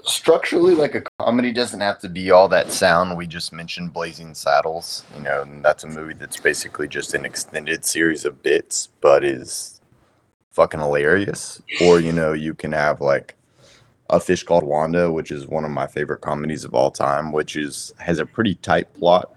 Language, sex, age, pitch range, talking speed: English, male, 20-39, 75-95 Hz, 190 wpm